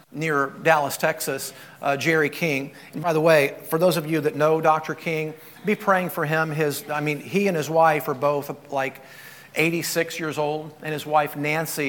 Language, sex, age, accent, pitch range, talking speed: English, male, 50-69, American, 145-170 Hz, 195 wpm